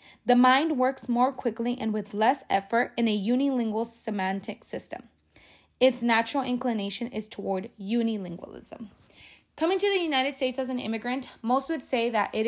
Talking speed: 160 wpm